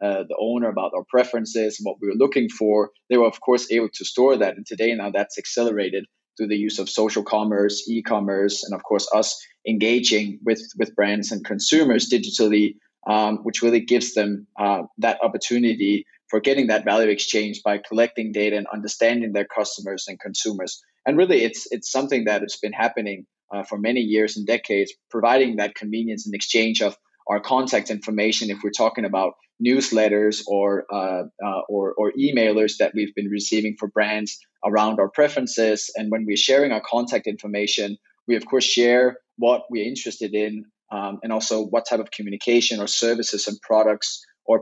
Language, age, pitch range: English, 20-39, 105-115 Hz